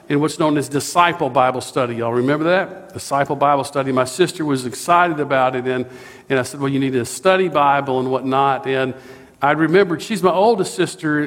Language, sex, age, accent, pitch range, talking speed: English, male, 50-69, American, 135-190 Hz, 200 wpm